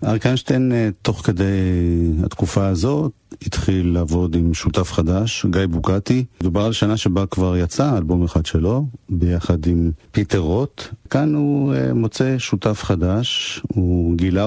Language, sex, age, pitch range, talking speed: Hebrew, male, 50-69, 85-110 Hz, 135 wpm